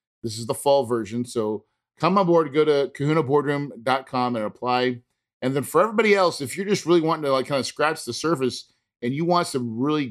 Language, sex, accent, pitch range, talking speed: English, male, American, 125-165 Hz, 215 wpm